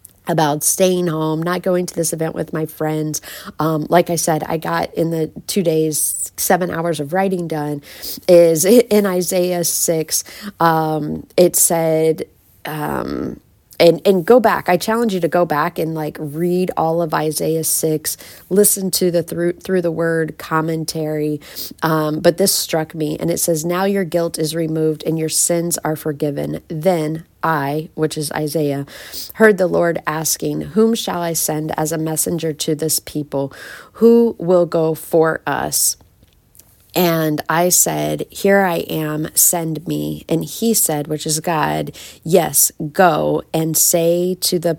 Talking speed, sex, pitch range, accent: 160 wpm, female, 155-175 Hz, American